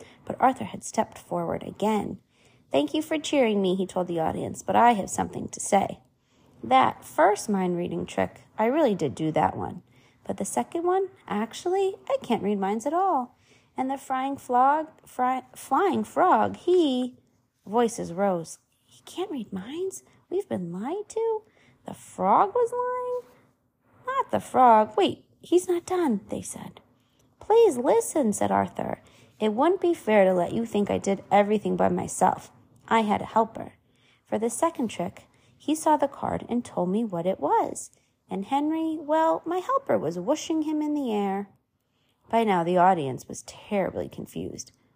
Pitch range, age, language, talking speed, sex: 190-315 Hz, 30-49, English, 170 wpm, female